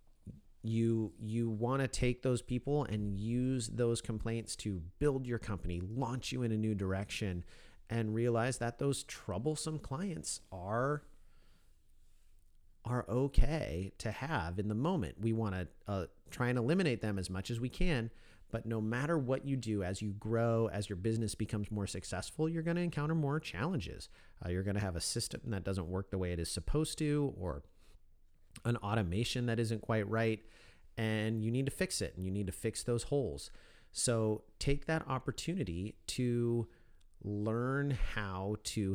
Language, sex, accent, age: English, male, American, 40-59